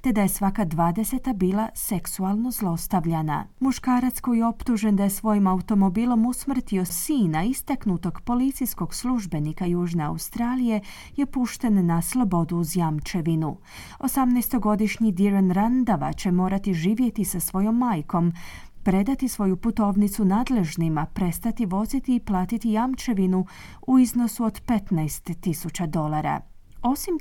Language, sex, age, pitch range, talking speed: Croatian, female, 30-49, 175-235 Hz, 115 wpm